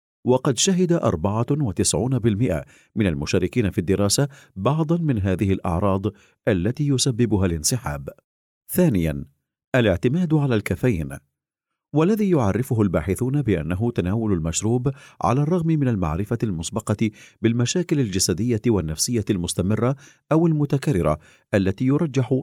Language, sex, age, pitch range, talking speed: Arabic, male, 50-69, 95-140 Hz, 100 wpm